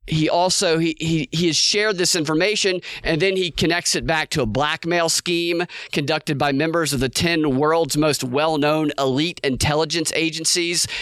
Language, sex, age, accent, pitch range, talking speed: English, male, 40-59, American, 145-185 Hz, 170 wpm